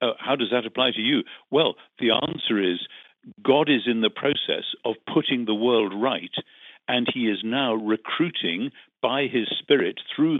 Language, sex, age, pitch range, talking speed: English, male, 50-69, 105-130 Hz, 175 wpm